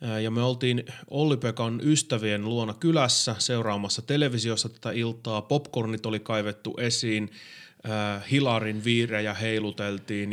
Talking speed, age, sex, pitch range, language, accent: 105 wpm, 30-49, male, 105-125 Hz, Finnish, native